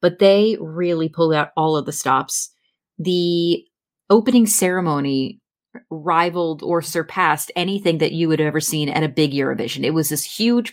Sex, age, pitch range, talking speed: female, 30-49, 160-200 Hz, 170 wpm